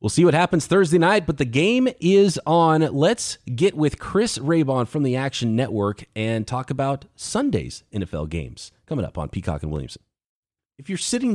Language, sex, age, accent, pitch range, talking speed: English, male, 30-49, American, 125-180 Hz, 185 wpm